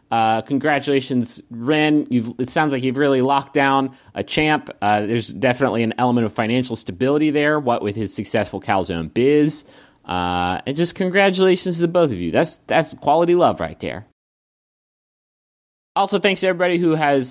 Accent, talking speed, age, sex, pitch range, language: American, 165 wpm, 30-49, male, 120-160 Hz, English